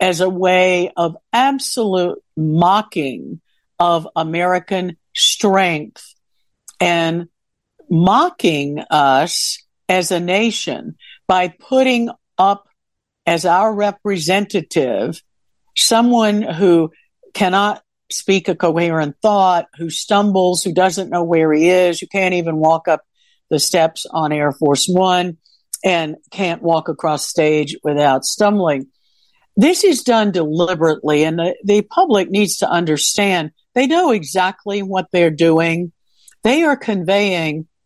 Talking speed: 115 wpm